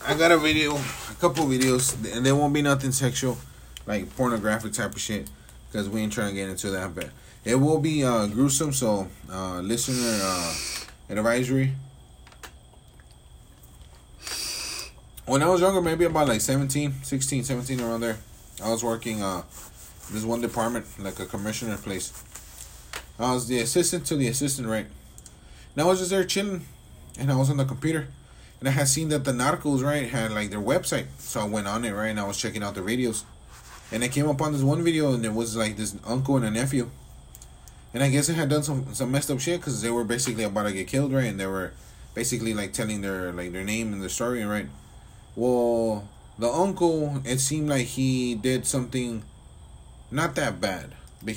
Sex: male